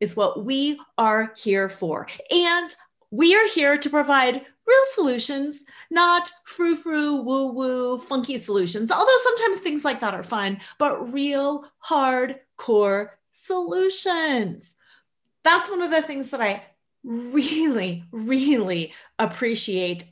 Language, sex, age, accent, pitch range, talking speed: English, female, 30-49, American, 220-320 Hz, 125 wpm